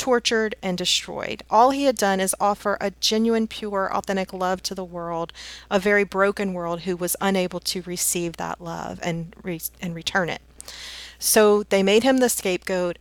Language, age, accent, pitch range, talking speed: English, 40-59, American, 175-210 Hz, 180 wpm